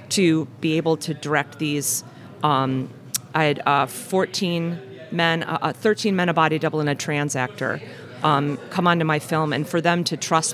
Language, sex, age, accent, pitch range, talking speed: English, female, 40-59, American, 140-170 Hz, 190 wpm